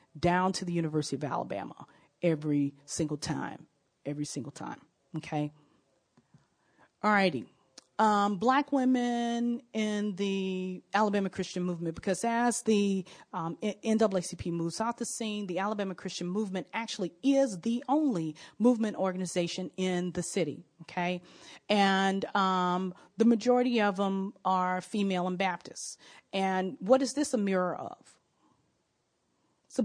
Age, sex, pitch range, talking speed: 40-59, female, 180-225 Hz, 125 wpm